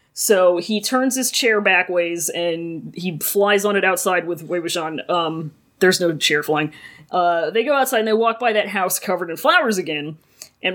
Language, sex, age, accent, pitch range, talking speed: English, female, 30-49, American, 180-260 Hz, 195 wpm